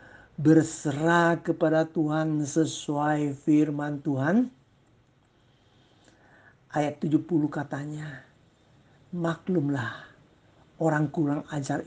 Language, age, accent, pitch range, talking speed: Indonesian, 50-69, native, 145-190 Hz, 65 wpm